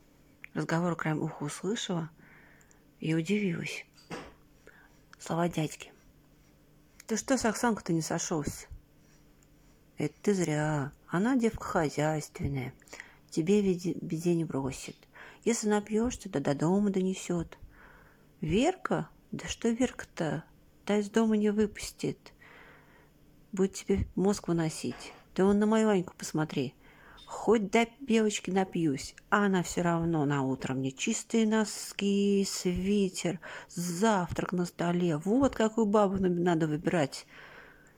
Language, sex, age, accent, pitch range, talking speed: Russian, female, 40-59, native, 160-205 Hz, 115 wpm